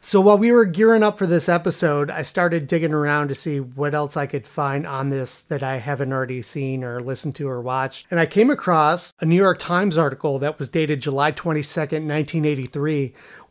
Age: 30-49